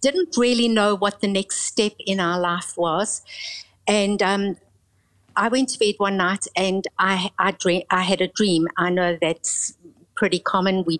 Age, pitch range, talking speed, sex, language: 60-79, 185-225 Hz, 180 wpm, female, English